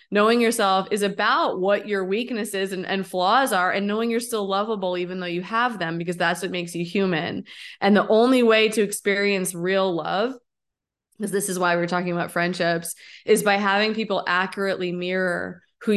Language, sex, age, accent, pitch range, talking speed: English, female, 20-39, American, 180-220 Hz, 190 wpm